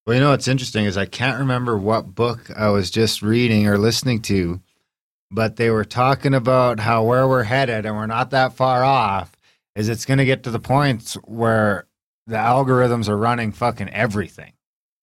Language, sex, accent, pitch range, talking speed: English, male, American, 110-130 Hz, 190 wpm